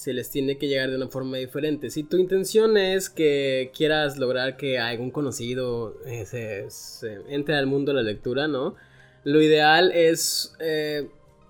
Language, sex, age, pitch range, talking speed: Spanish, male, 20-39, 135-170 Hz, 165 wpm